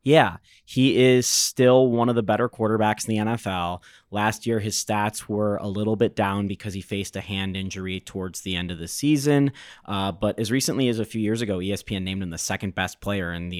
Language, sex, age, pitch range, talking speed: English, male, 20-39, 95-115 Hz, 225 wpm